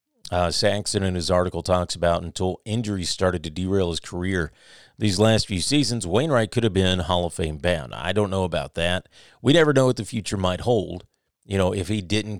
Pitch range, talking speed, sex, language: 90-115 Hz, 215 wpm, male, English